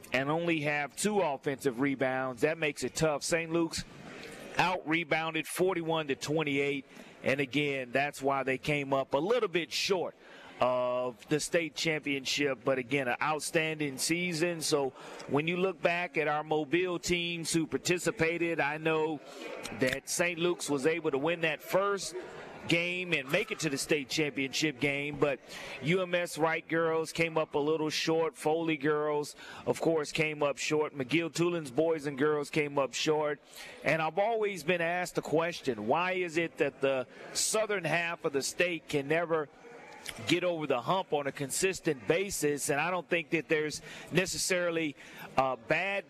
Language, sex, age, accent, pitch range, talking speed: English, male, 40-59, American, 145-170 Hz, 165 wpm